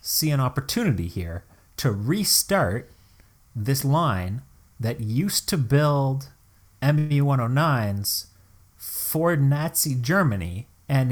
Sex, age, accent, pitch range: male, 30-49, American, 100-140 Hz